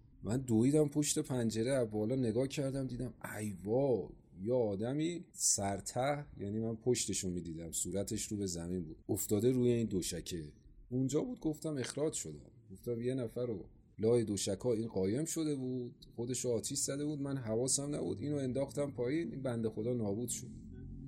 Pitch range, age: 110-140 Hz, 30-49